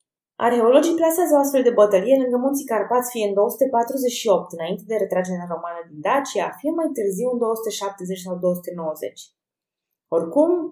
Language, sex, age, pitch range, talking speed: Romanian, female, 20-39, 180-250 Hz, 140 wpm